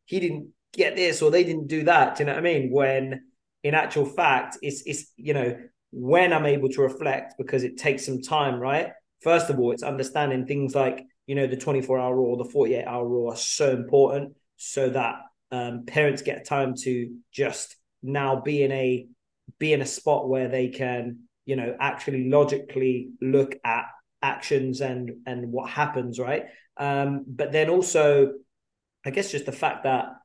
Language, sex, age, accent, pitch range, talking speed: English, male, 20-39, British, 125-145 Hz, 190 wpm